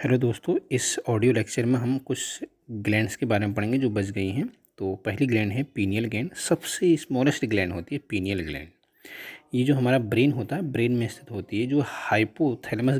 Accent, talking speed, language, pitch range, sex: native, 200 wpm, Hindi, 110-145 Hz, male